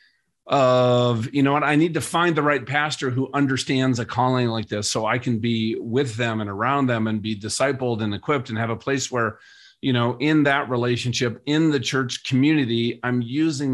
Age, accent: 40-59, American